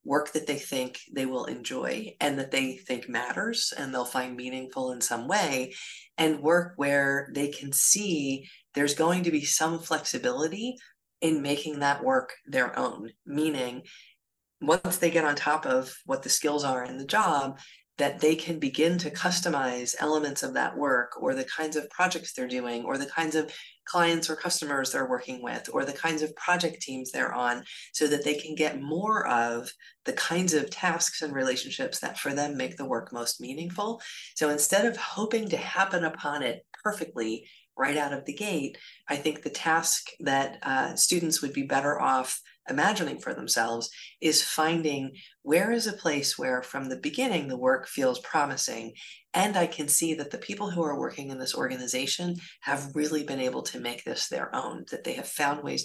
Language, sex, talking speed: English, female, 190 wpm